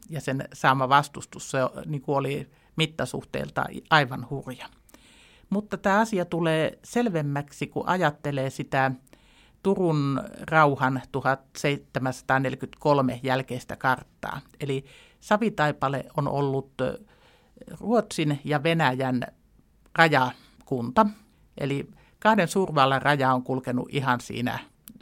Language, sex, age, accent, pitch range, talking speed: Finnish, male, 50-69, native, 130-170 Hz, 90 wpm